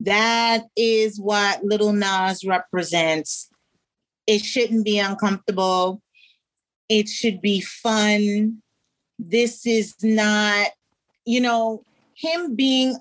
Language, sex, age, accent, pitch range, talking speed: English, female, 30-49, American, 210-235 Hz, 95 wpm